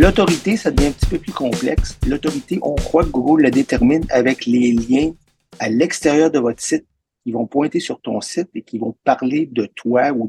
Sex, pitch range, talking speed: male, 120-165 Hz, 210 wpm